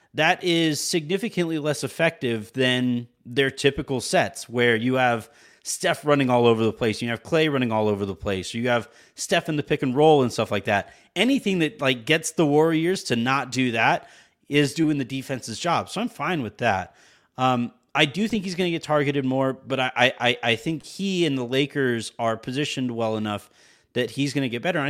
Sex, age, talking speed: male, 30-49, 210 wpm